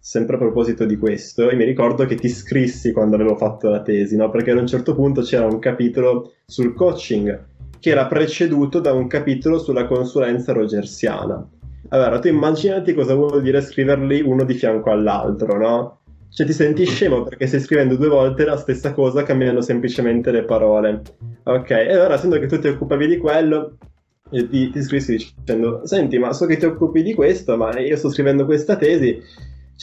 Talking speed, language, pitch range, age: 190 wpm, Italian, 110-145 Hz, 20-39